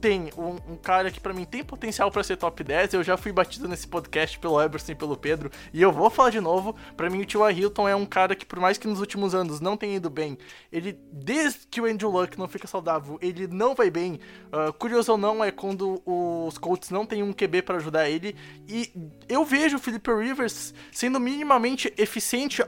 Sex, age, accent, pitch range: male, 20-39, Brazilian, 175-225 Hz